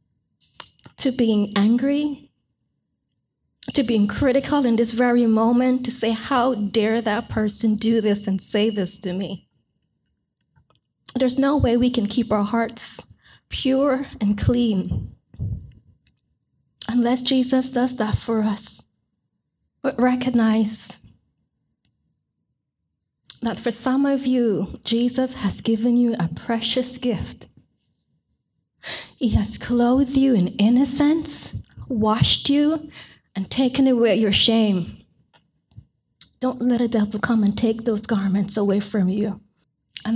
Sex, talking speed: female, 120 wpm